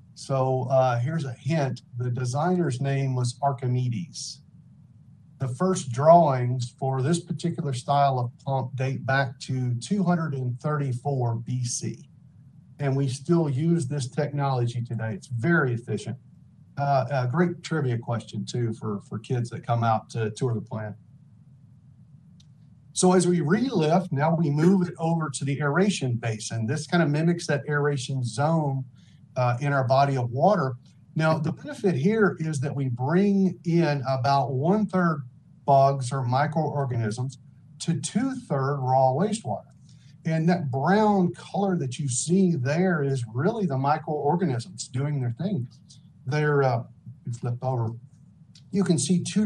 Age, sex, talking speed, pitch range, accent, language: 50-69, male, 145 wpm, 130-165 Hz, American, English